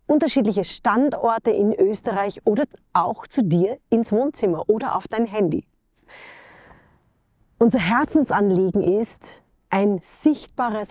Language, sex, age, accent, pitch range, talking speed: English, female, 30-49, German, 190-235 Hz, 105 wpm